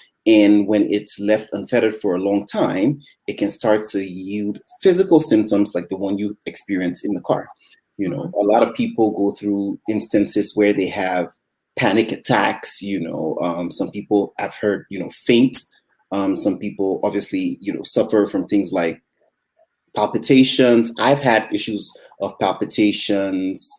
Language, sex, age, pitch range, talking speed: English, male, 30-49, 100-115 Hz, 160 wpm